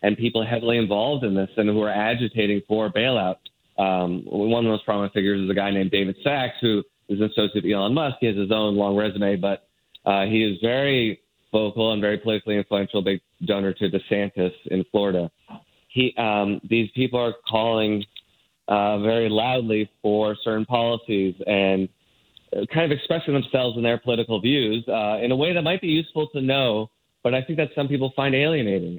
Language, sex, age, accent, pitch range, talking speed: English, male, 30-49, American, 100-120 Hz, 195 wpm